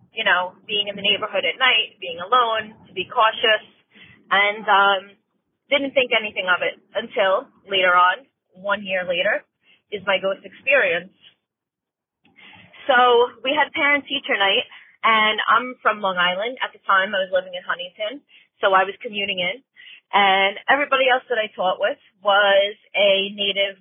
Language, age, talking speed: English, 30-49, 160 wpm